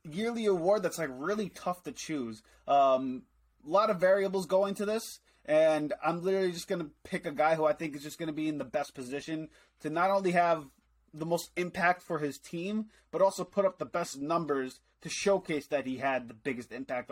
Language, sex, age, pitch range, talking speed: English, male, 20-39, 140-180 Hz, 210 wpm